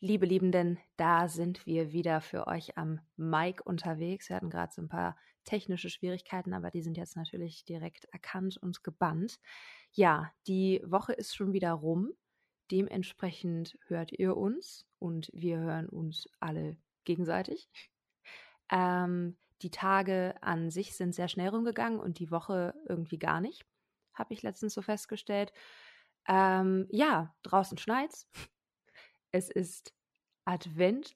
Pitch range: 170-190 Hz